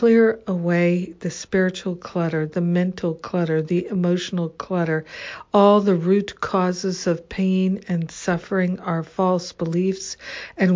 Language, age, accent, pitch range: English, 60-79, American, 175-195 Hz